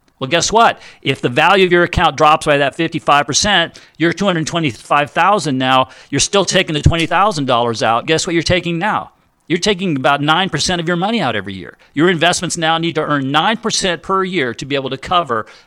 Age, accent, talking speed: 50-69, American, 195 wpm